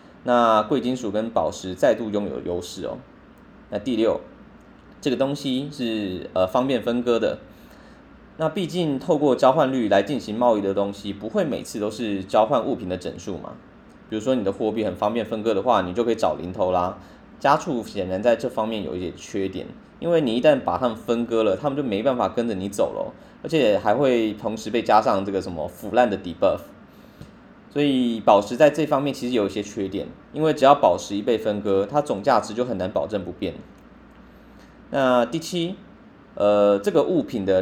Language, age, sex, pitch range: Chinese, 20-39, male, 100-125 Hz